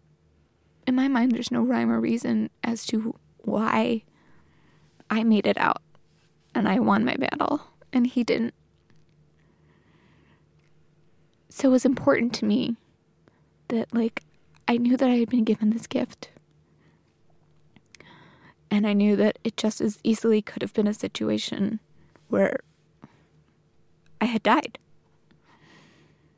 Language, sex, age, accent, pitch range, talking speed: English, female, 20-39, American, 200-235 Hz, 130 wpm